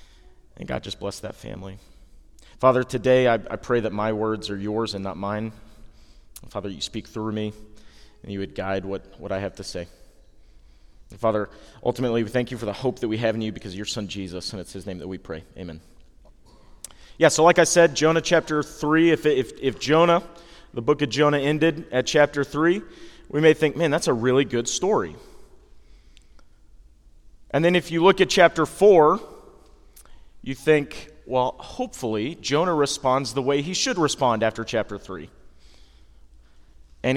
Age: 30-49